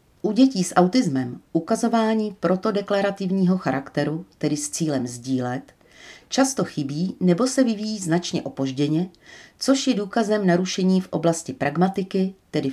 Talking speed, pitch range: 125 wpm, 150-195 Hz